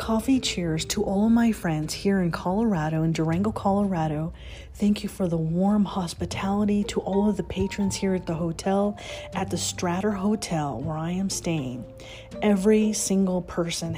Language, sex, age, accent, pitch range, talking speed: English, female, 30-49, American, 170-200 Hz, 165 wpm